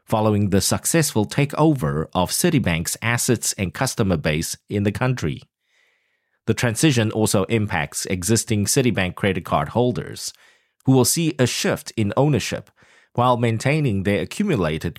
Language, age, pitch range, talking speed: English, 30-49, 95-135 Hz, 130 wpm